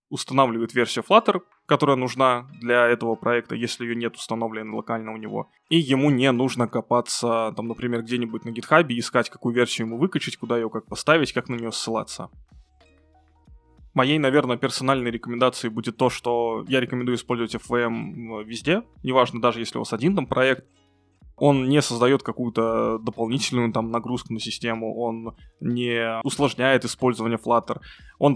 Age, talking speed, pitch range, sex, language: 20-39, 155 wpm, 115-130 Hz, male, Russian